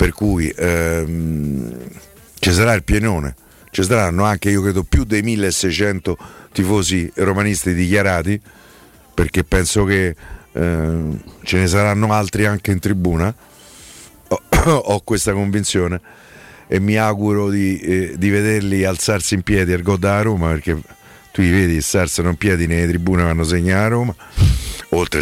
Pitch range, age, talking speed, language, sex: 90-110 Hz, 50-69, 145 wpm, Italian, male